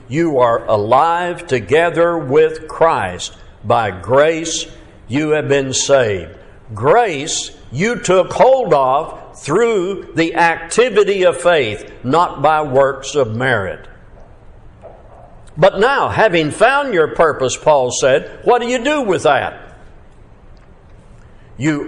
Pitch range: 130-175 Hz